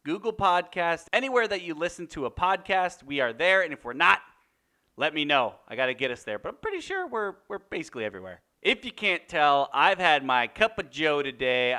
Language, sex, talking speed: English, male, 225 wpm